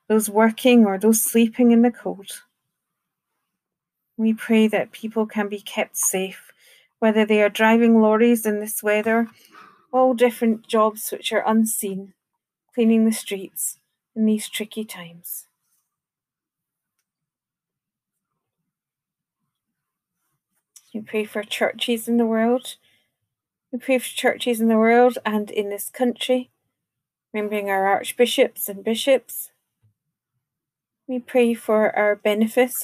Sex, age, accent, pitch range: female, 40-59, British, 200-240 Hz